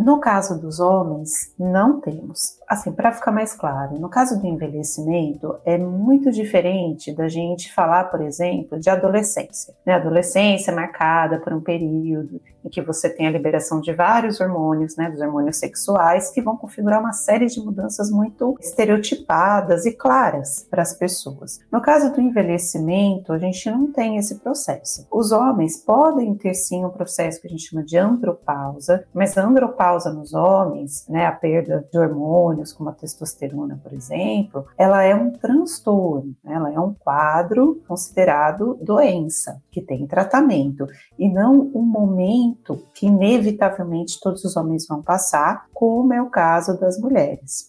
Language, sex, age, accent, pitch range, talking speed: Portuguese, female, 40-59, Brazilian, 160-215 Hz, 165 wpm